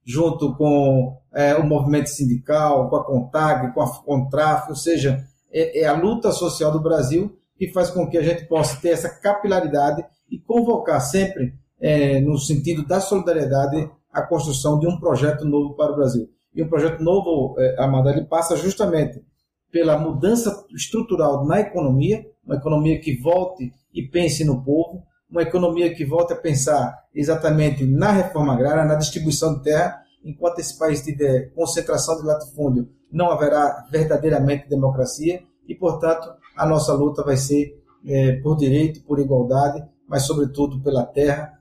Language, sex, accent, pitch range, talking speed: Portuguese, male, Brazilian, 140-165 Hz, 160 wpm